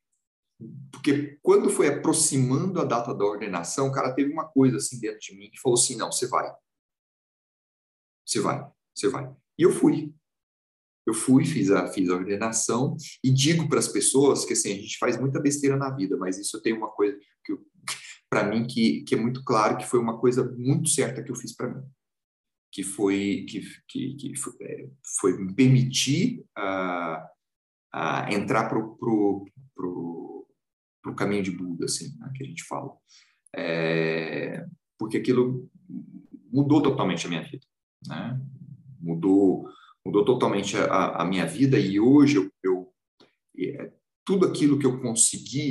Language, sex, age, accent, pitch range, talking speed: Portuguese, male, 40-59, Brazilian, 95-145 Hz, 165 wpm